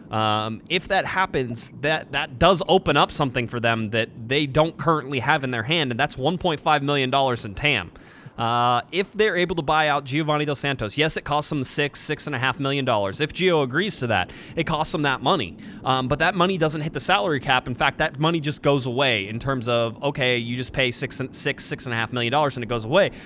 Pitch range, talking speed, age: 125-155 Hz, 240 wpm, 20-39